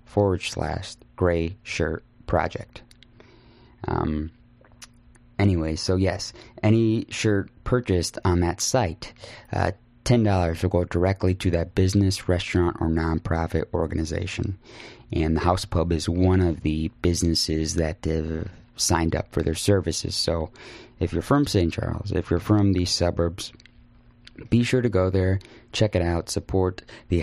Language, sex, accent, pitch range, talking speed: English, male, American, 85-110 Hz, 140 wpm